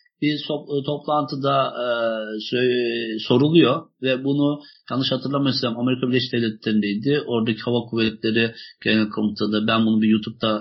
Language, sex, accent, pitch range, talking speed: Turkish, male, native, 115-160 Hz, 120 wpm